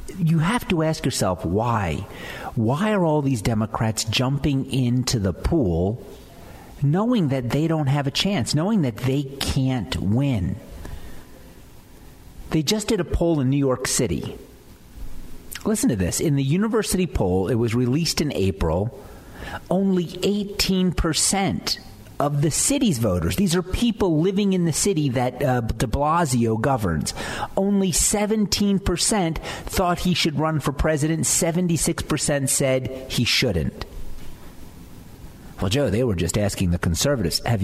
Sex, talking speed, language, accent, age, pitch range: male, 140 wpm, English, American, 50-69, 110-170 Hz